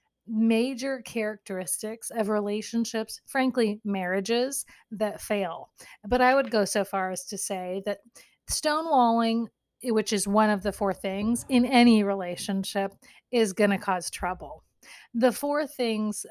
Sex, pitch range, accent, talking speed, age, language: female, 205-235 Hz, American, 135 wpm, 30-49, English